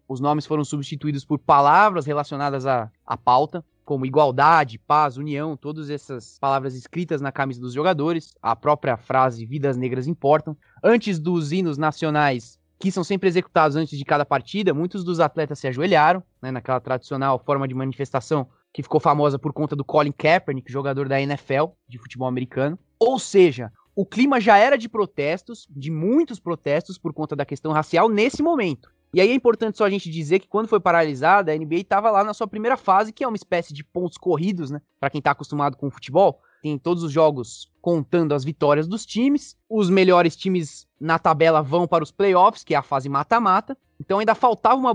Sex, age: male, 20-39